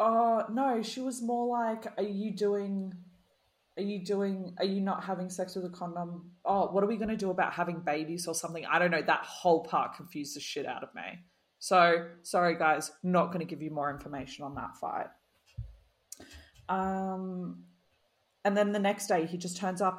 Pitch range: 165-195 Hz